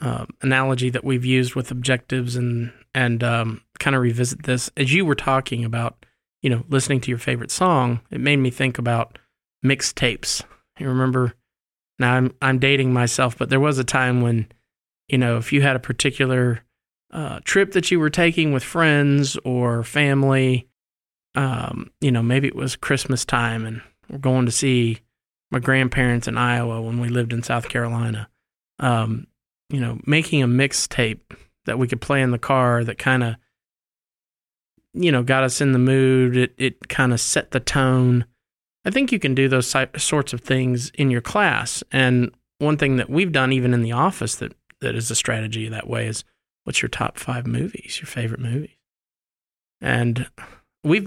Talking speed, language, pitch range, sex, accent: 180 wpm, English, 120-135 Hz, male, American